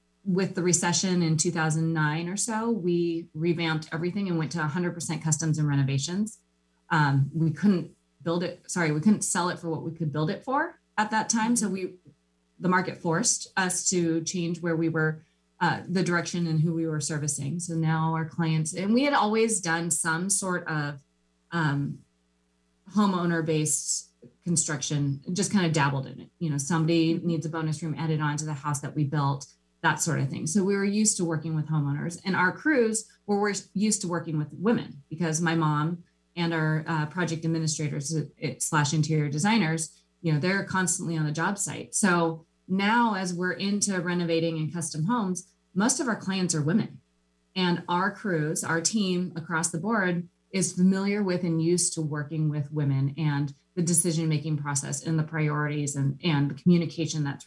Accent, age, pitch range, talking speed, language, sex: American, 20-39, 150-180 Hz, 185 wpm, English, female